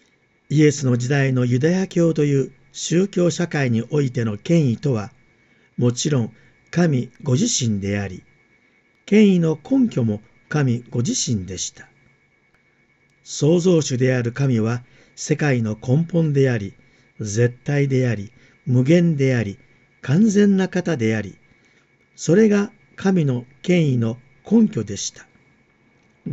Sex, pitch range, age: male, 120-175 Hz, 50-69